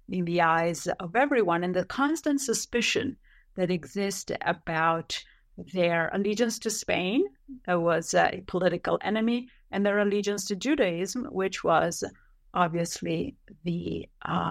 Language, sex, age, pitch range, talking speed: English, female, 50-69, 180-220 Hz, 130 wpm